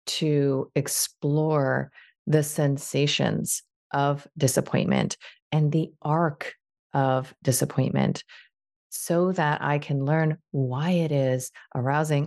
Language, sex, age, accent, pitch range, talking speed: English, female, 30-49, American, 130-155 Hz, 100 wpm